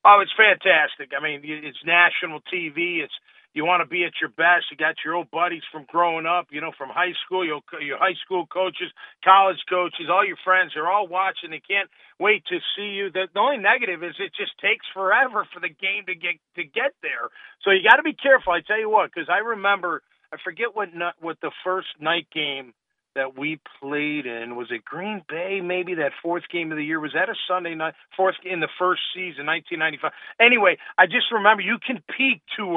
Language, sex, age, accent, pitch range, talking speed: English, male, 50-69, American, 170-215 Hz, 220 wpm